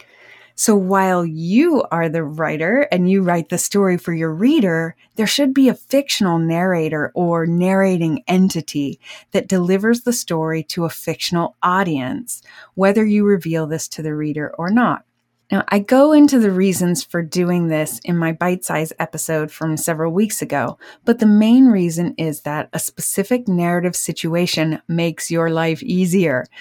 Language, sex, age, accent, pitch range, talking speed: English, female, 30-49, American, 160-195 Hz, 160 wpm